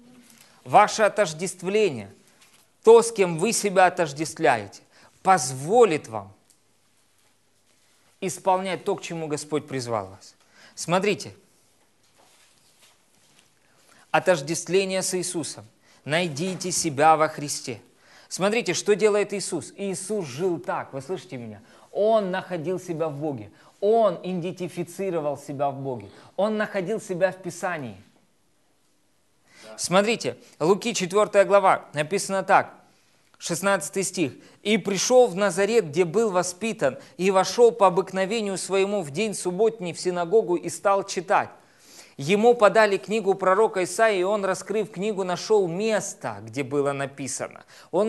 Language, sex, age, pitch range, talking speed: Russian, male, 20-39, 155-205 Hz, 115 wpm